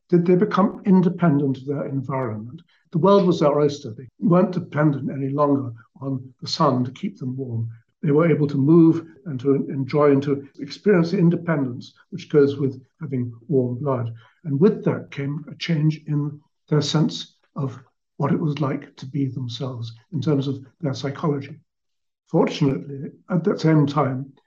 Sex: male